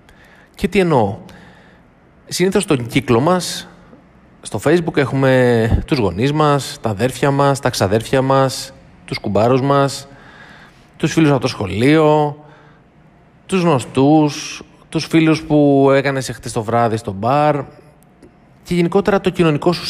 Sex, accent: male, native